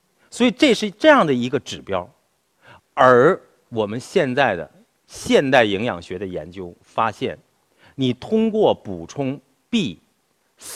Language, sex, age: Chinese, male, 50-69